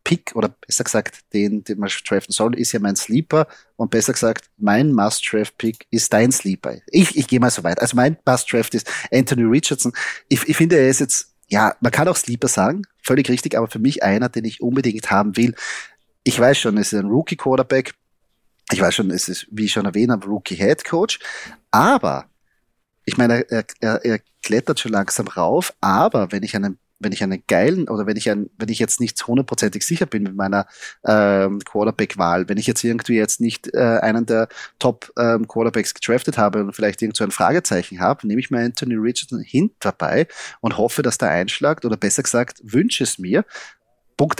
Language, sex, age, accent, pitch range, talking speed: German, male, 30-49, German, 105-125 Hz, 195 wpm